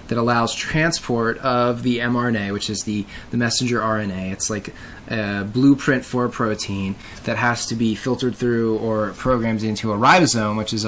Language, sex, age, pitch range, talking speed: English, male, 20-39, 105-120 Hz, 175 wpm